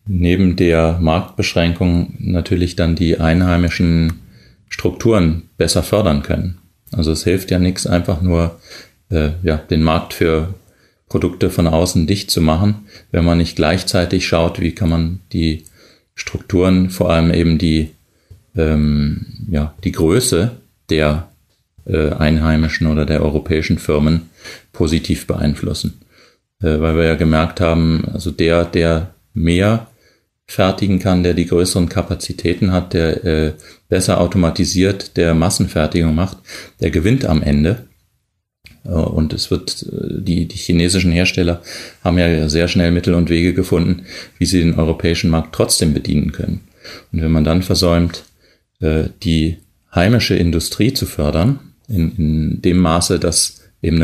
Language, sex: German, male